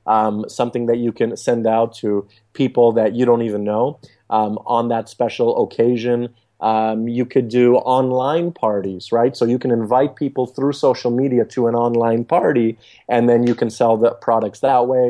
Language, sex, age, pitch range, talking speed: English, male, 30-49, 115-145 Hz, 185 wpm